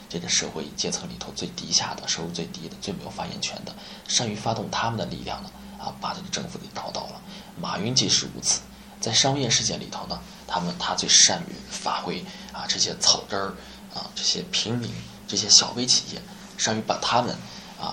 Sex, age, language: male, 20-39, Chinese